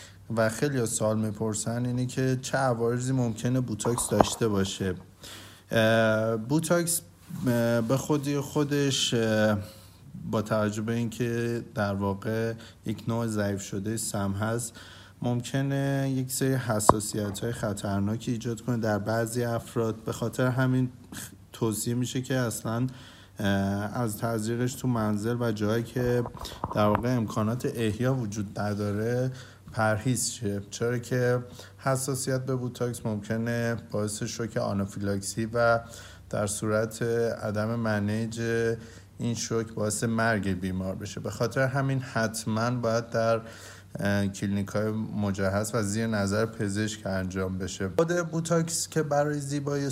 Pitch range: 105-125 Hz